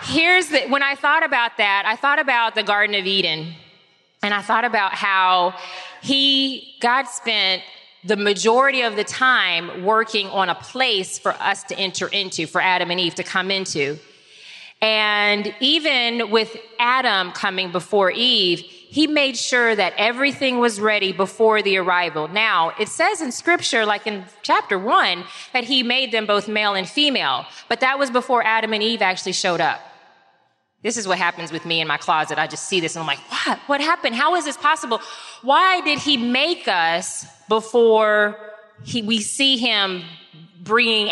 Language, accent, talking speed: English, American, 175 wpm